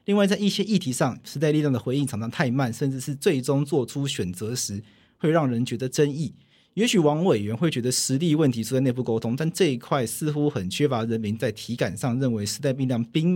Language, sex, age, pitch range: Chinese, male, 40-59, 115-155 Hz